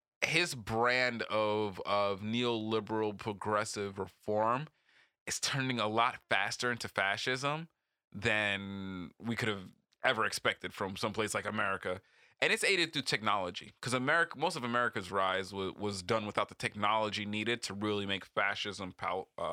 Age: 20-39